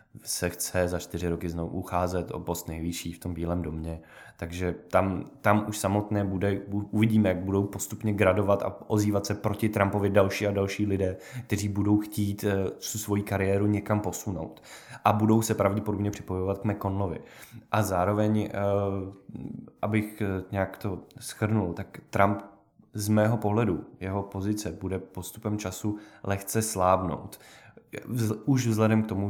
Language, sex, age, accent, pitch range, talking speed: Czech, male, 20-39, native, 90-105 Hz, 150 wpm